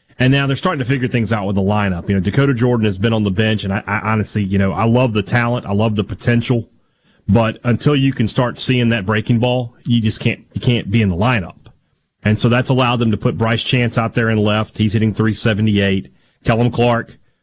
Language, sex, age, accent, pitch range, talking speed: English, male, 30-49, American, 105-120 Hz, 240 wpm